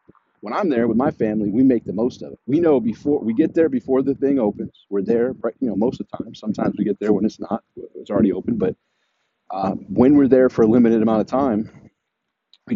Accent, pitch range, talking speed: American, 110-135 Hz, 245 wpm